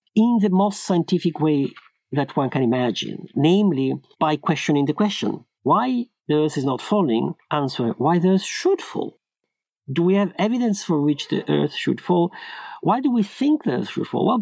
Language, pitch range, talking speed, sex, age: English, 140-200 Hz, 185 wpm, male, 50-69